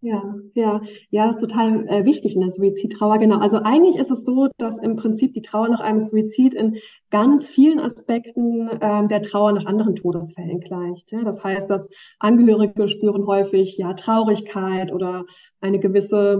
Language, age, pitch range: German, 20-39, 200-225 Hz